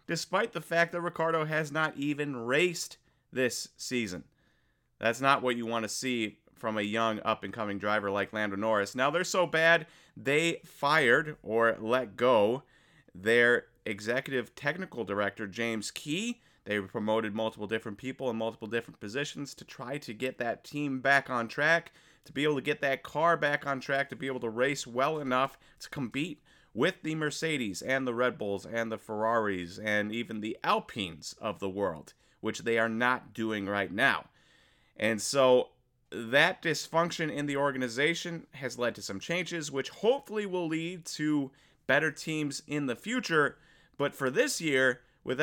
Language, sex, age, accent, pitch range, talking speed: English, male, 30-49, American, 115-150 Hz, 170 wpm